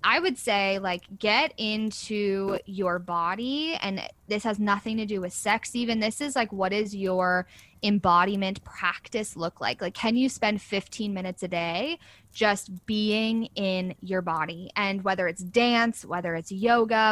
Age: 20-39